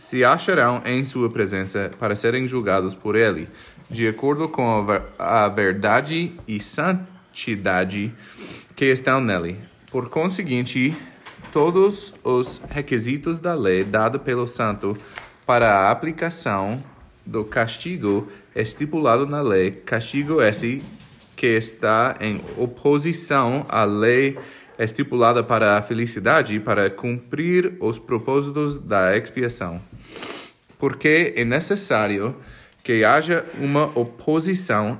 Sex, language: male, English